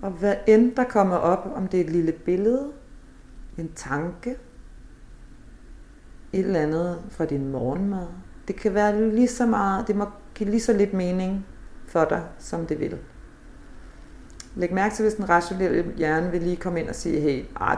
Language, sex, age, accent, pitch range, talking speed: Danish, female, 40-59, native, 165-205 Hz, 180 wpm